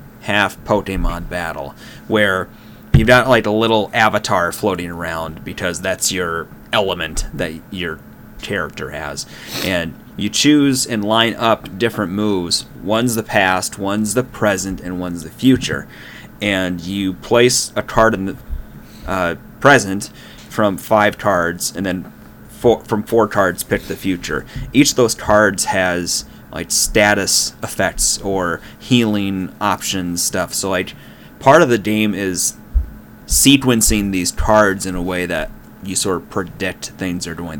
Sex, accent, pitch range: male, American, 90-110 Hz